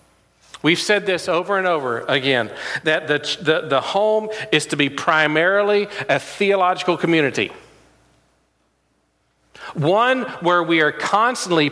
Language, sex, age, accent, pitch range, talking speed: English, male, 40-59, American, 150-205 Hz, 125 wpm